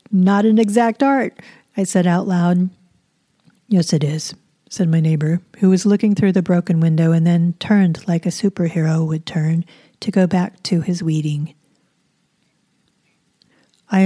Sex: female